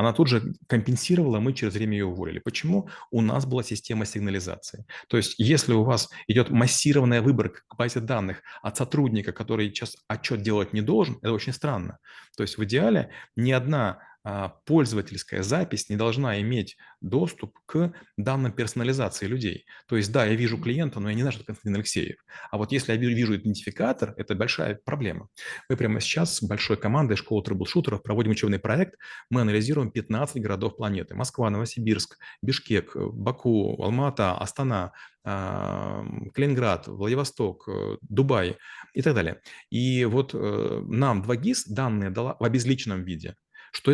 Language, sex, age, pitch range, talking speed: Russian, male, 30-49, 105-130 Hz, 155 wpm